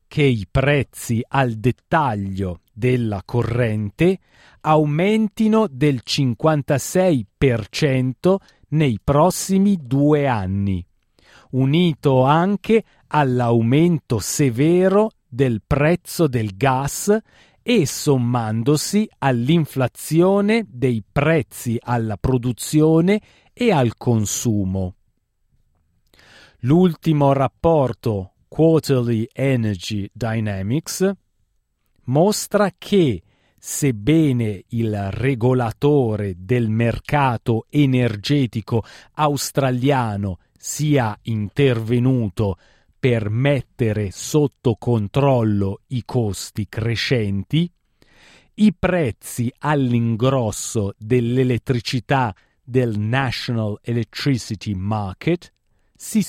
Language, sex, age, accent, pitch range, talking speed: Italian, male, 40-59, native, 110-150 Hz, 70 wpm